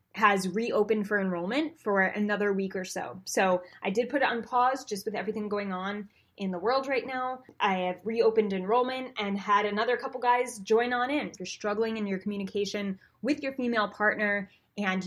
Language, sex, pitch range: English, female, 195-245 Hz